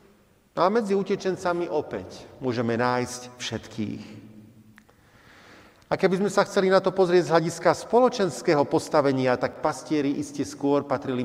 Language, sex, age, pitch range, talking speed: Slovak, male, 40-59, 115-175 Hz, 135 wpm